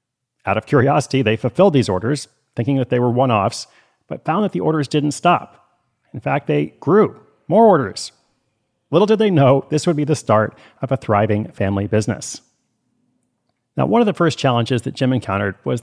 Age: 40-59